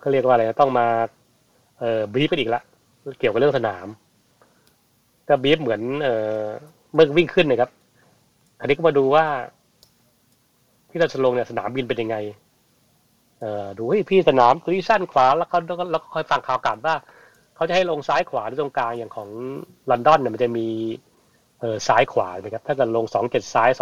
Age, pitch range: 30-49, 115-150 Hz